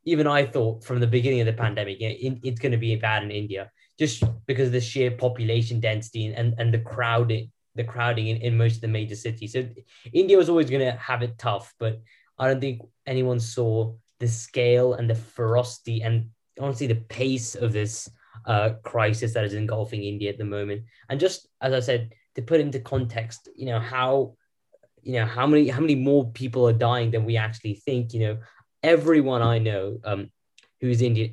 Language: English